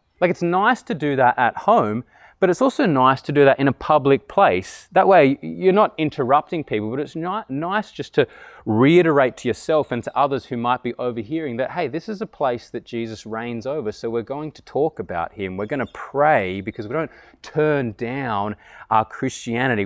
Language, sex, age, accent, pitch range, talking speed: English, male, 20-39, Australian, 115-165 Hz, 210 wpm